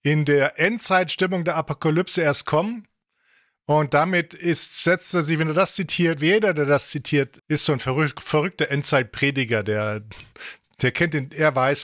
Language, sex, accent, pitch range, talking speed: English, male, German, 145-180 Hz, 160 wpm